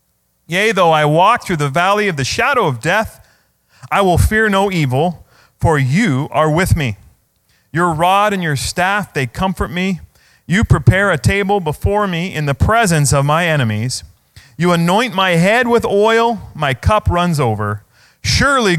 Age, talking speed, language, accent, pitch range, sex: 30-49, 170 wpm, English, American, 120-185 Hz, male